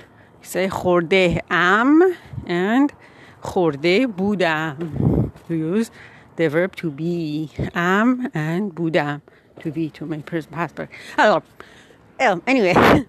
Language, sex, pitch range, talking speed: Persian, female, 185-240 Hz, 110 wpm